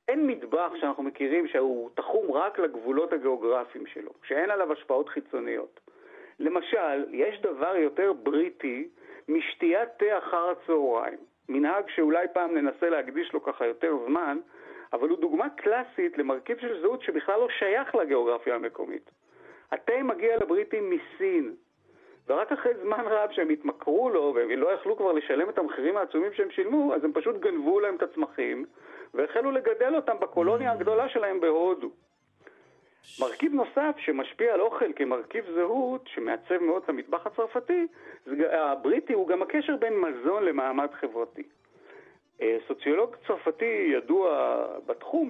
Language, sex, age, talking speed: Hebrew, male, 50-69, 135 wpm